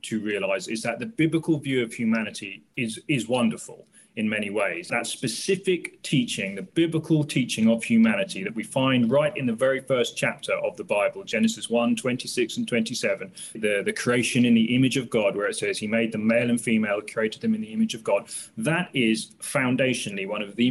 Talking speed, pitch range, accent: 205 wpm, 115-150 Hz, British